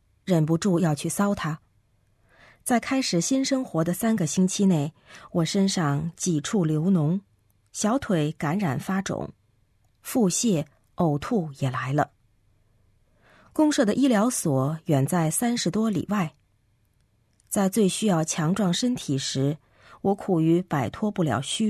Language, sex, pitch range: Chinese, female, 135-205 Hz